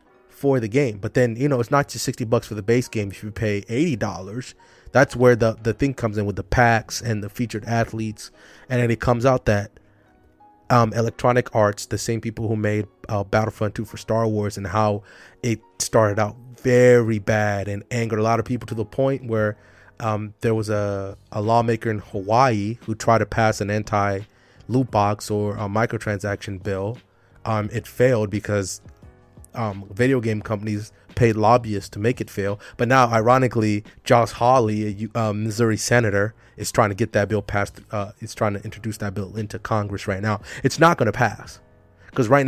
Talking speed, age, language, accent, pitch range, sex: 200 wpm, 20-39, English, American, 105-120 Hz, male